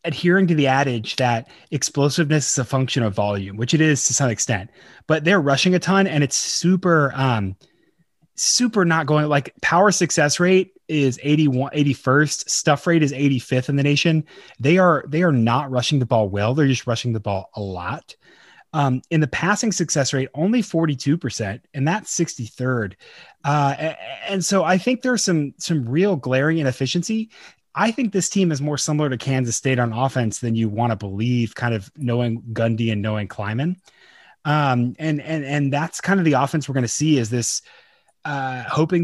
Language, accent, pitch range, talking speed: English, American, 120-160 Hz, 190 wpm